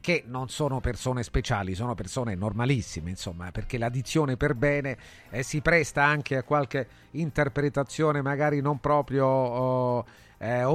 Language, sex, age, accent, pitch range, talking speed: Italian, male, 40-59, native, 120-145 Hz, 135 wpm